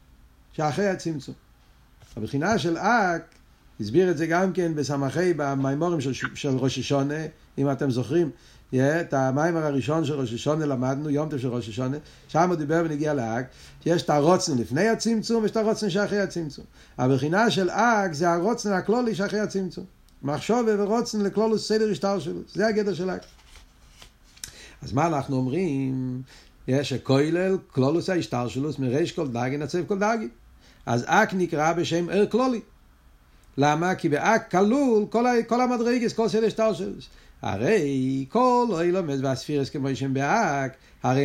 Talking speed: 65 wpm